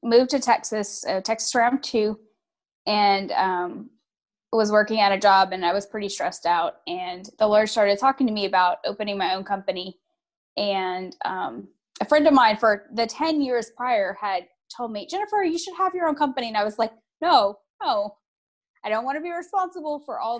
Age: 10-29